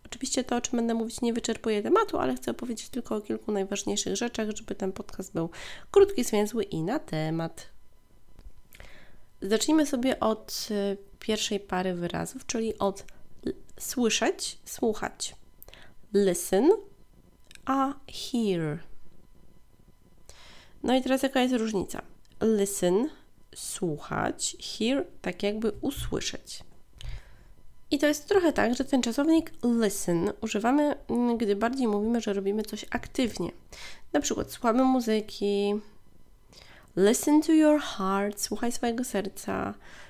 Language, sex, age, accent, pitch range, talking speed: Polish, female, 20-39, native, 200-255 Hz, 120 wpm